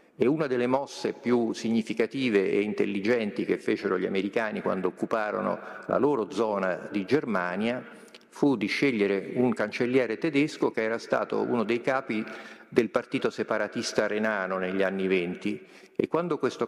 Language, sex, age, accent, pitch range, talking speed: Italian, male, 50-69, native, 100-125 Hz, 150 wpm